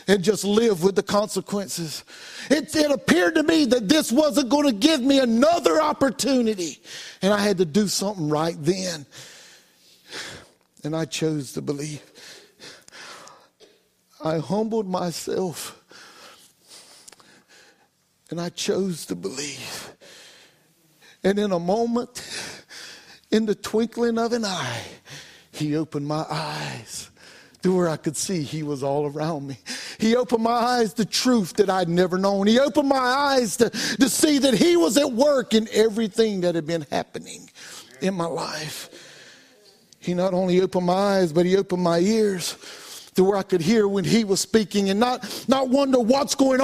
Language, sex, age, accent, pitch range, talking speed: English, male, 60-79, American, 175-250 Hz, 155 wpm